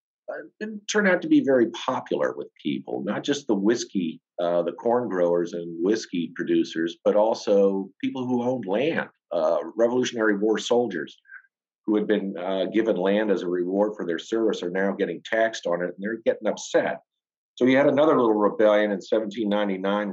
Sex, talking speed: male, 180 wpm